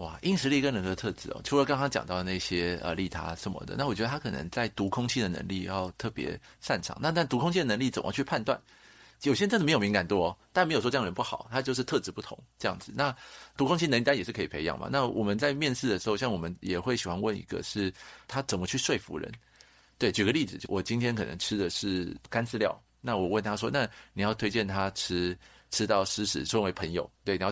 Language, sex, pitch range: Chinese, male, 95-135 Hz